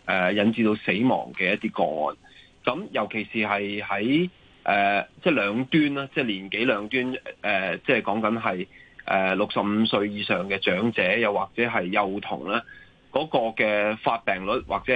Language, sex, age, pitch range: Chinese, male, 20-39, 100-130 Hz